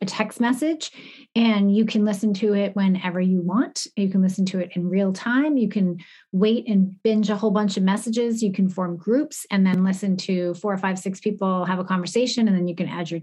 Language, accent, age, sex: English, American, 30-49, female